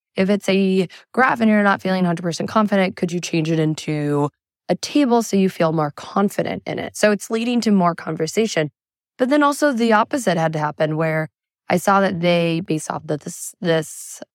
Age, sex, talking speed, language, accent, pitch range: 10-29, female, 205 wpm, English, American, 160-195 Hz